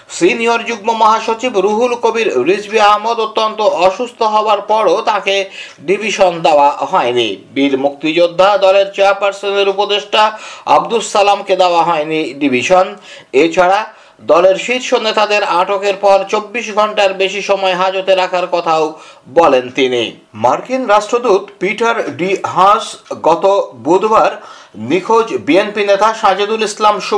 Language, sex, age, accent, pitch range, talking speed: Bengali, male, 50-69, native, 185-220 Hz, 75 wpm